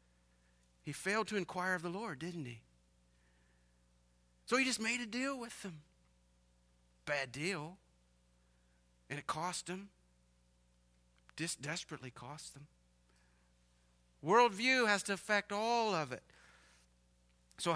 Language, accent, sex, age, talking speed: English, American, male, 40-59, 115 wpm